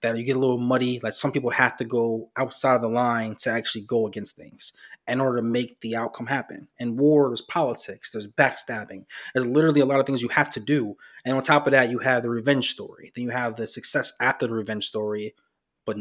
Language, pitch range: English, 110-130 Hz